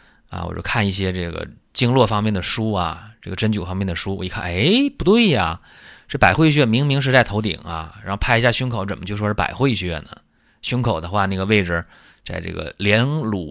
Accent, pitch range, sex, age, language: native, 90-120 Hz, male, 30-49, Chinese